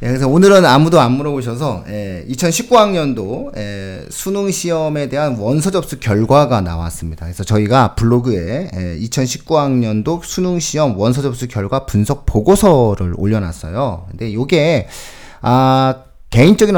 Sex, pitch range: male, 105-165 Hz